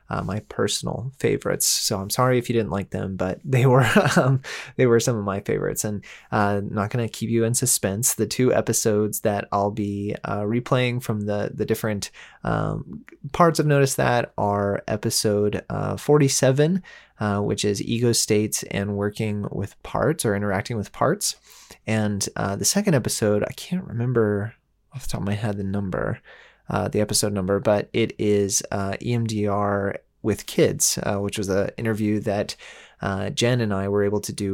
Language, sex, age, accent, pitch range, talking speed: English, male, 20-39, American, 100-115 Hz, 180 wpm